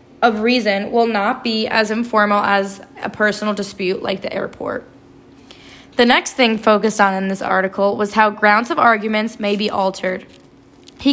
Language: English